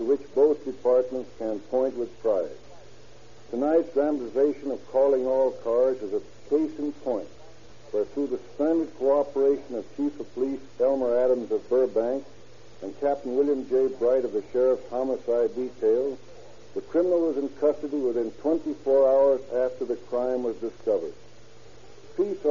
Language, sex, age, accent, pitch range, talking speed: English, male, 60-79, American, 130-195 Hz, 150 wpm